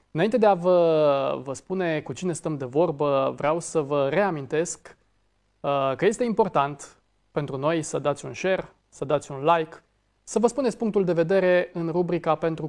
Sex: male